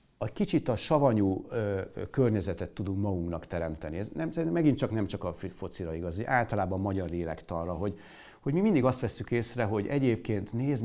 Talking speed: 185 wpm